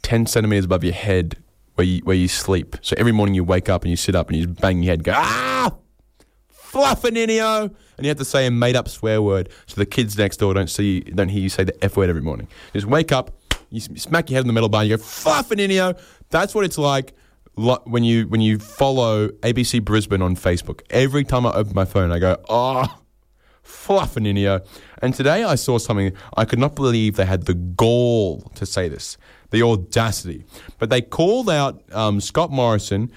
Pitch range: 95-125 Hz